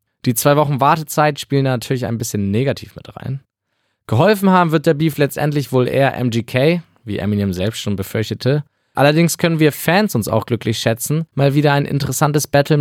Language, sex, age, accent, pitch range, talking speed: German, male, 20-39, German, 115-150 Hz, 185 wpm